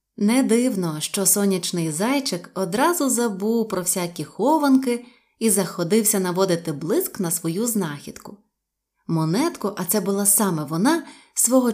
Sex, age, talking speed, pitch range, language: female, 20-39, 125 wpm, 180-240 Hz, Ukrainian